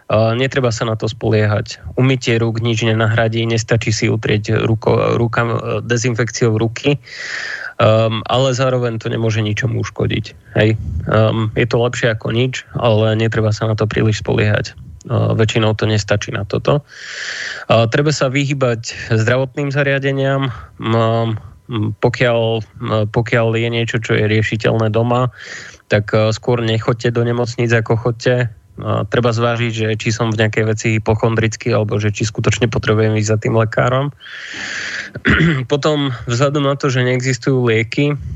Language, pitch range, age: Slovak, 110-120 Hz, 20-39